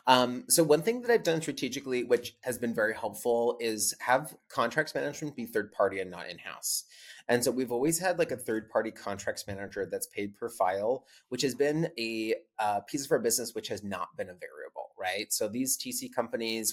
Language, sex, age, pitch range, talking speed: English, male, 30-49, 105-150 Hz, 210 wpm